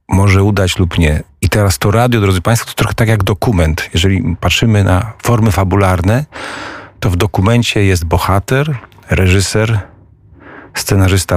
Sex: male